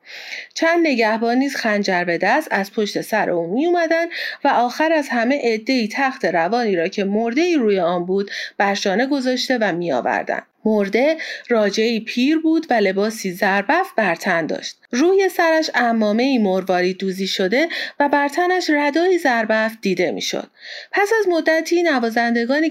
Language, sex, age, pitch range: Persian, female, 40-59, 210-290 Hz